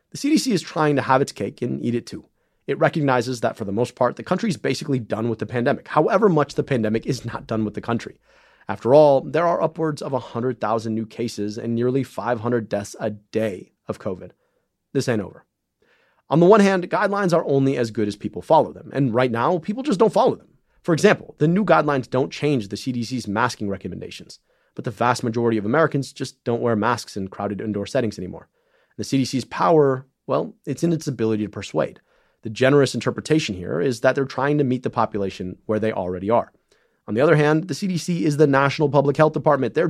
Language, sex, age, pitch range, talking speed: English, male, 30-49, 115-155 Hz, 215 wpm